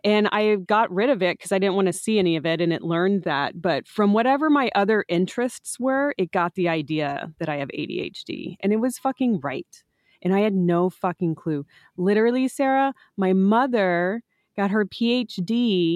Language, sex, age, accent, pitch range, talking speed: English, female, 30-49, American, 160-200 Hz, 195 wpm